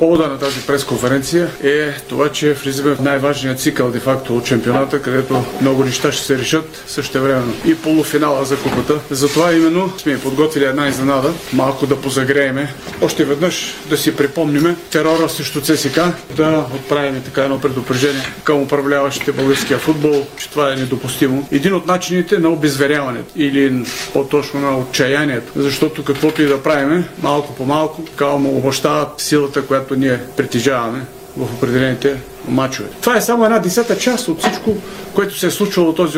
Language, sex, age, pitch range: Bulgarian, male, 40-59, 140-165 Hz